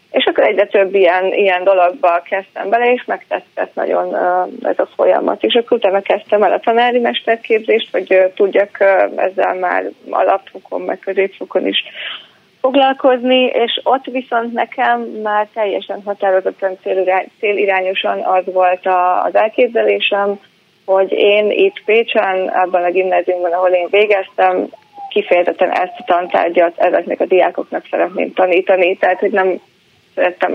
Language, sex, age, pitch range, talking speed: Hungarian, female, 30-49, 185-235 Hz, 130 wpm